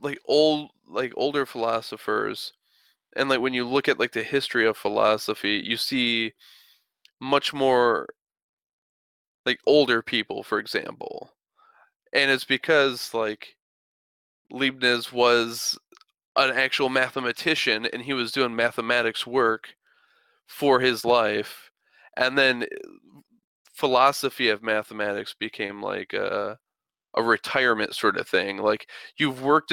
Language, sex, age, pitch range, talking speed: English, male, 20-39, 115-140 Hz, 120 wpm